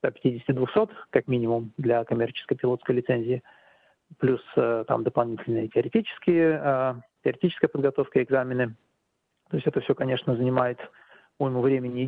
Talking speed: 125 wpm